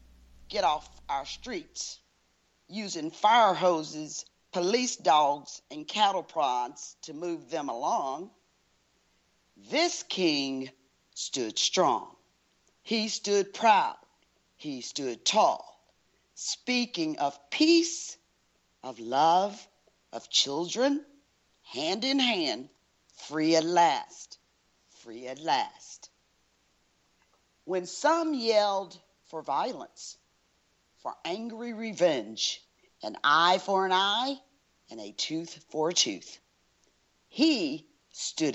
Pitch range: 160-265 Hz